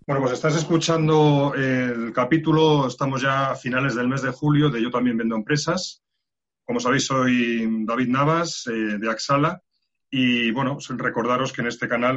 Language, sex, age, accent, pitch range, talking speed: Spanish, male, 30-49, Spanish, 115-145 Hz, 170 wpm